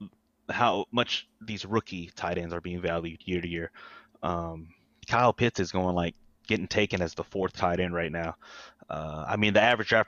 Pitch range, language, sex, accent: 90-110 Hz, English, male, American